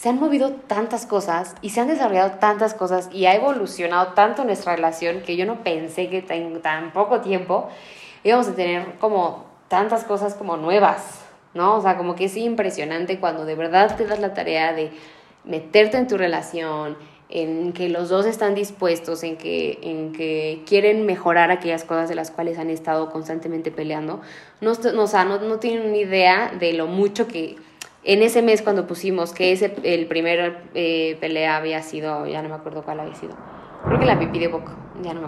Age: 20-39